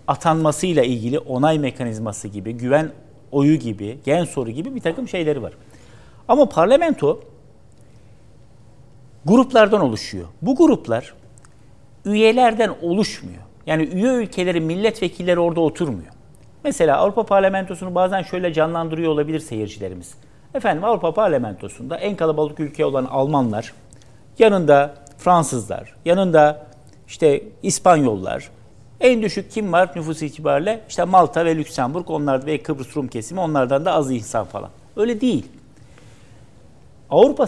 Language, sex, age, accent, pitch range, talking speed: Turkish, male, 50-69, native, 135-205 Hz, 115 wpm